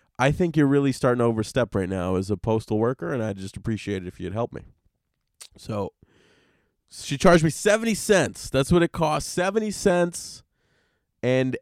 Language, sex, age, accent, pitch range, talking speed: English, male, 20-39, American, 115-155 Hz, 180 wpm